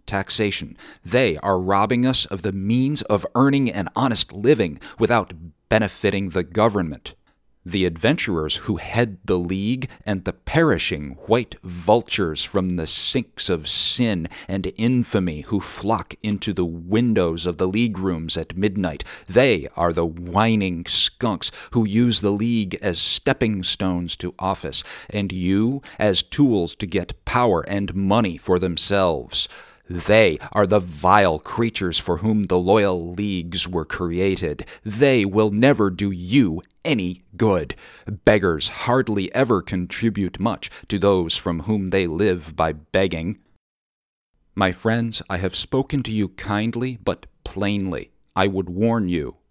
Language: English